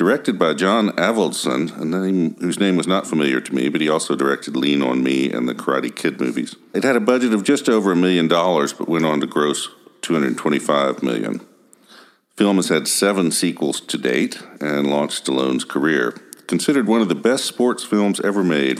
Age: 50-69